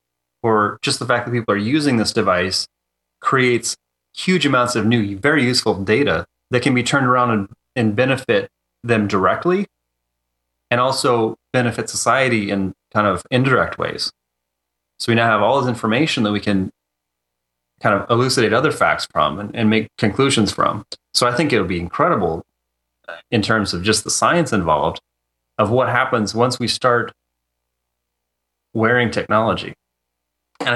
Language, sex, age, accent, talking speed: English, male, 30-49, American, 160 wpm